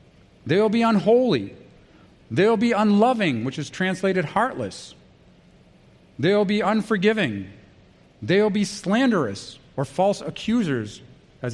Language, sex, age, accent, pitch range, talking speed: English, male, 40-59, American, 145-215 Hz, 105 wpm